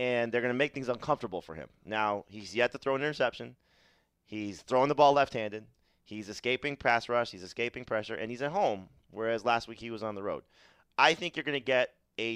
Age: 30-49